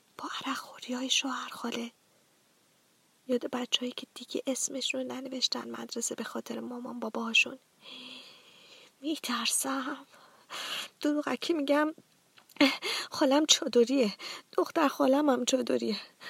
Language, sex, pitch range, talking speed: Persian, female, 245-290 Hz, 95 wpm